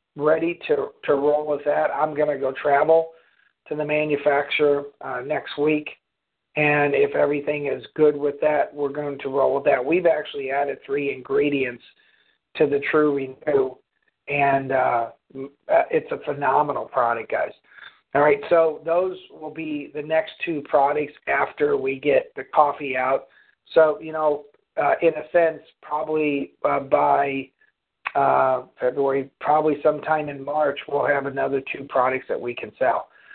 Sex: male